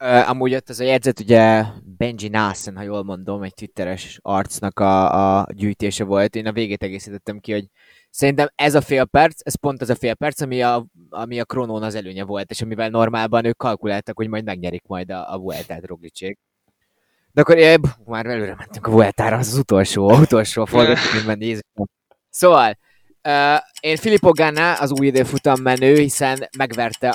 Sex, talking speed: male, 185 wpm